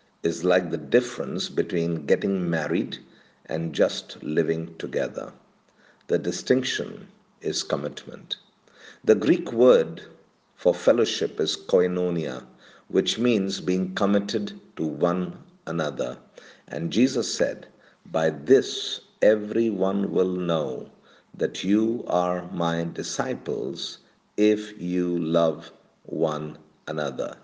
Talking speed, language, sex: 105 wpm, English, male